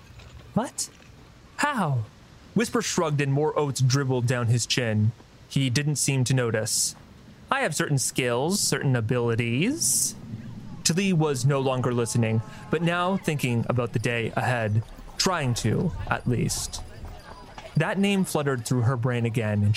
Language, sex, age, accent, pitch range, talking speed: English, male, 30-49, American, 120-165 Hz, 140 wpm